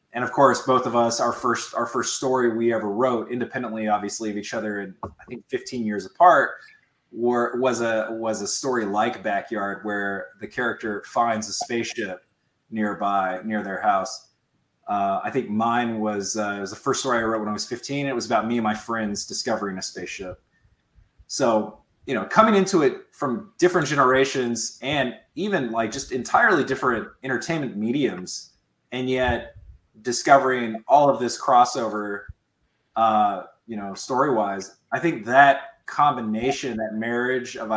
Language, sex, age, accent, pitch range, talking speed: English, male, 20-39, American, 105-125 Hz, 165 wpm